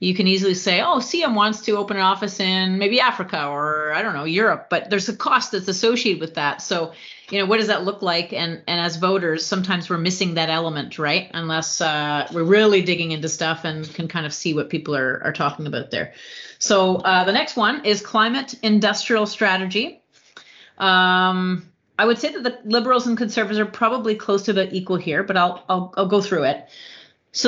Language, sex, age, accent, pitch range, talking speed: English, female, 30-49, American, 175-210 Hz, 210 wpm